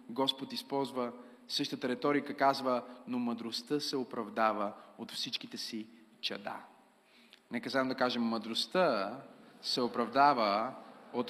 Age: 30-49